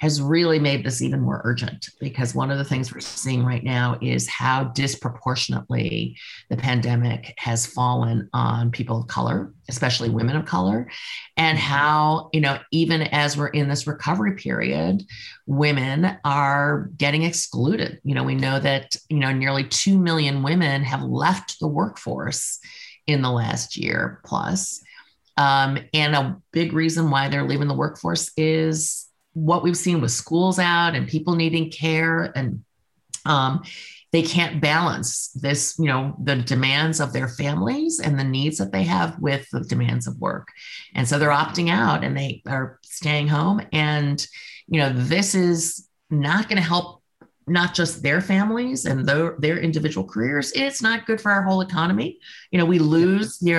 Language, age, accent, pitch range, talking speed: English, 40-59, American, 130-165 Hz, 170 wpm